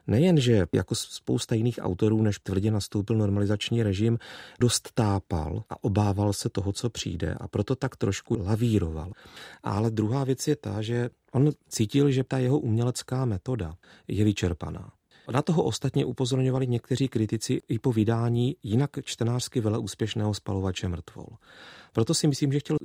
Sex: male